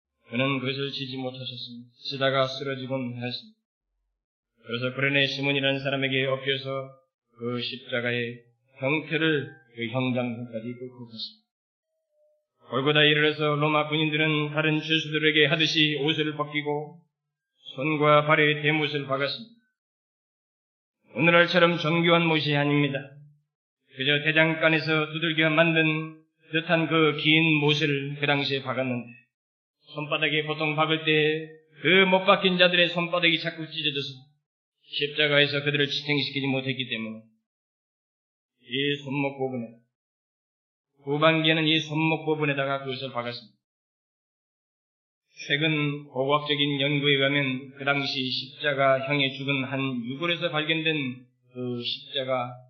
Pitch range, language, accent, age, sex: 130-155 Hz, Korean, native, 20-39, male